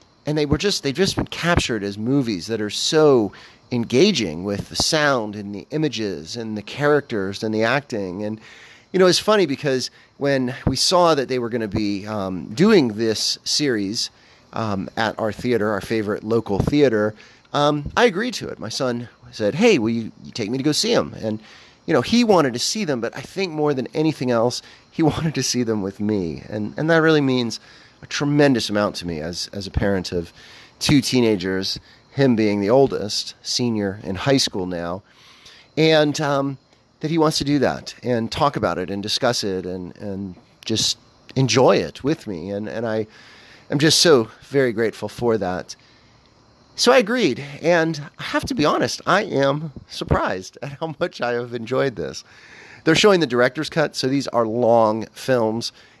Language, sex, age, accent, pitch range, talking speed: English, male, 30-49, American, 105-145 Hz, 195 wpm